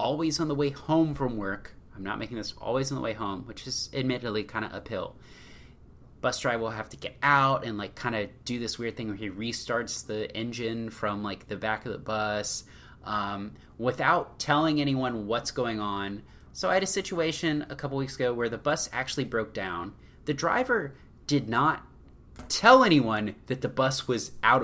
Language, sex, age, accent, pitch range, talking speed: English, male, 20-39, American, 105-140 Hz, 200 wpm